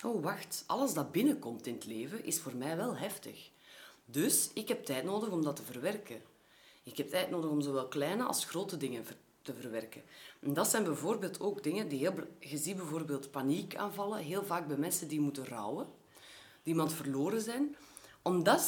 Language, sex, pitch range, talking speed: Dutch, female, 140-200 Hz, 185 wpm